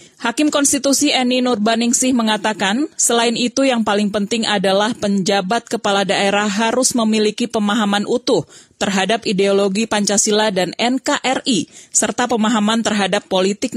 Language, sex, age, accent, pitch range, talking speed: Indonesian, female, 40-59, native, 205-250 Hz, 120 wpm